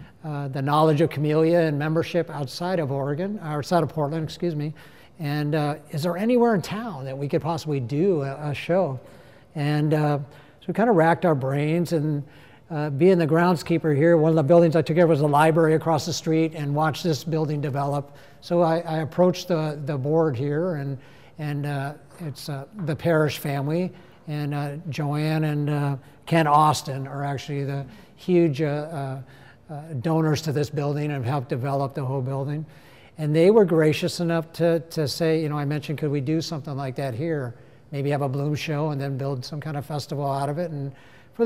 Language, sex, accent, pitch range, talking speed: English, male, American, 140-165 Hz, 205 wpm